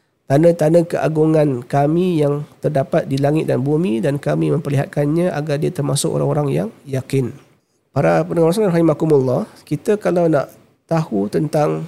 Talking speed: 145 wpm